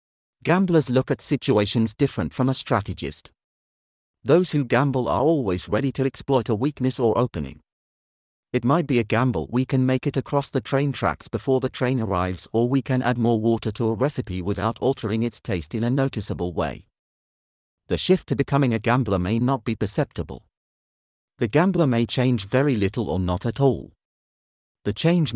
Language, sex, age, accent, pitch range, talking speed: English, male, 40-59, British, 105-135 Hz, 180 wpm